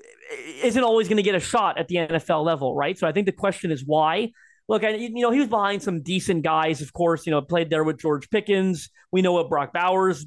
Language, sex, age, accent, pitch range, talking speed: English, male, 30-49, American, 165-205 Hz, 250 wpm